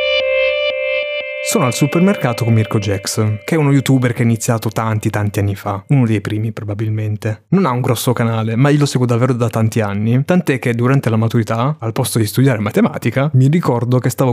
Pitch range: 115-145 Hz